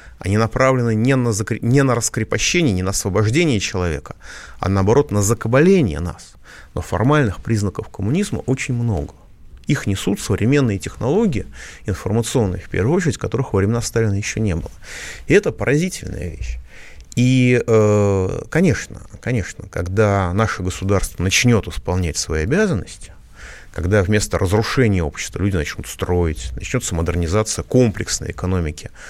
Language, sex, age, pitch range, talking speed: Russian, male, 30-49, 85-115 Hz, 125 wpm